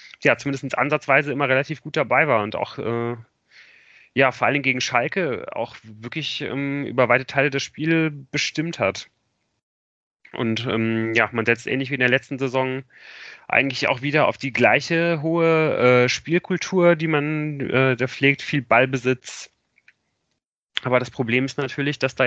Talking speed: 160 wpm